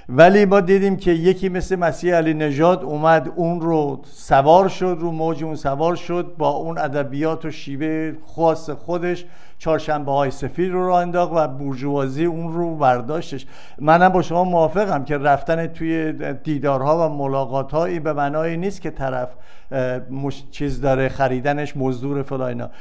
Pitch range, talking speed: 140-170 Hz, 145 wpm